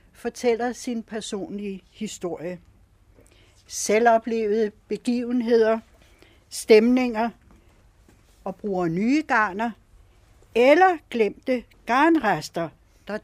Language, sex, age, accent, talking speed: Danish, female, 60-79, native, 70 wpm